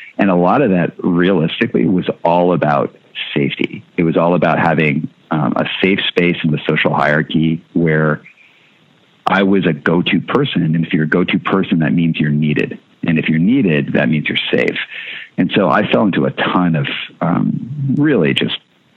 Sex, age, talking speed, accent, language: male, 50-69, 185 wpm, American, English